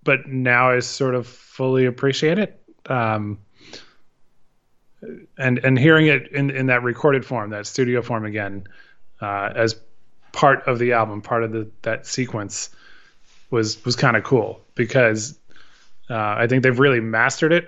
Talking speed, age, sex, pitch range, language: 155 wpm, 20-39, male, 115-140 Hz, English